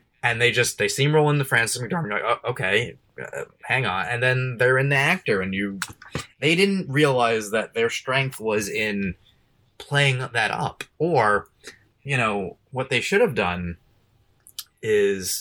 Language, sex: English, male